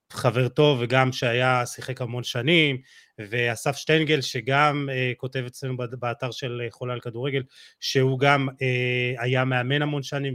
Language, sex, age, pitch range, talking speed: Hebrew, male, 30-49, 125-160 Hz, 145 wpm